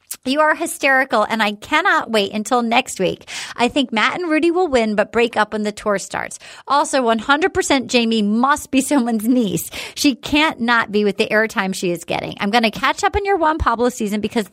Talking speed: 225 wpm